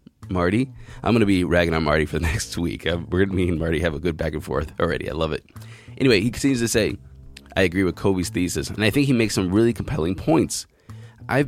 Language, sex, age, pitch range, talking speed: English, male, 20-39, 85-115 Hz, 250 wpm